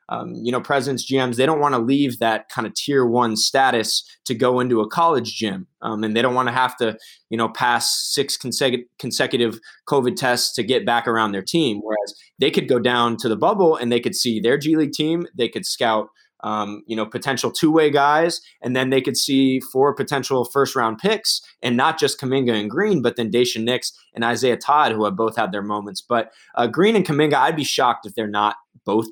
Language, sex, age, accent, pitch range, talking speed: English, male, 20-39, American, 115-130 Hz, 225 wpm